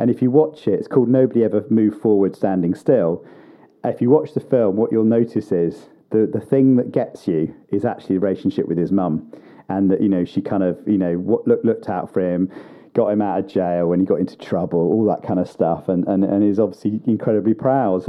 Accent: British